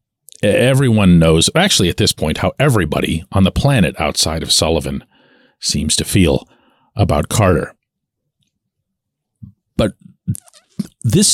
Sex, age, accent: male, 50-69, American